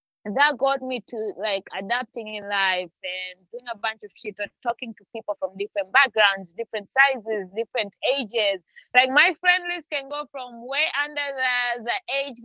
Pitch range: 195-260 Hz